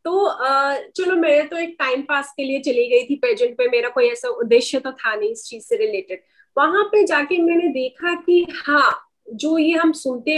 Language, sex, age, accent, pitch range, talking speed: Hindi, female, 30-49, native, 265-345 Hz, 220 wpm